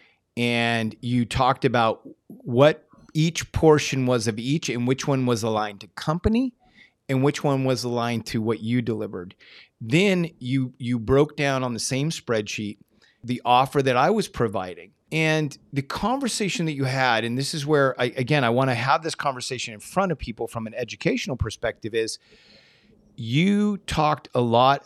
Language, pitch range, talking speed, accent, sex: English, 115-140 Hz, 175 wpm, American, male